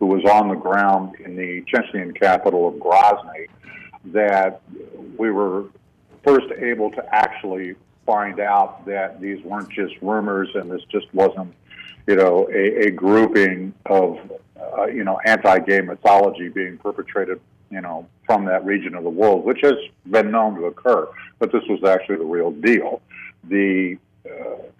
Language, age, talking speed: English, 50-69, 155 wpm